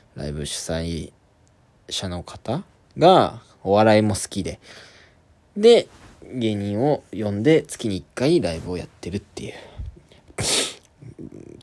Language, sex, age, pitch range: Japanese, male, 20-39, 85-125 Hz